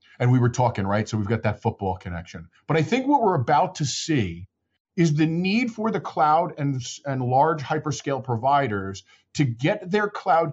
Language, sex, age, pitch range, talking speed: English, male, 50-69, 120-170 Hz, 195 wpm